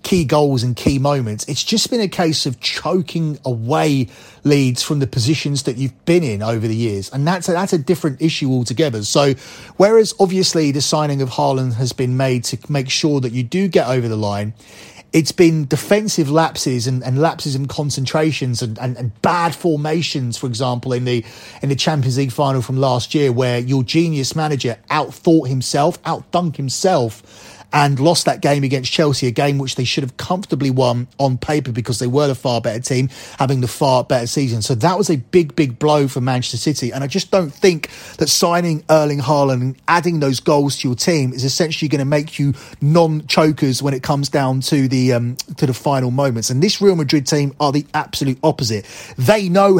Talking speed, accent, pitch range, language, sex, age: 205 wpm, British, 130-160 Hz, English, male, 30-49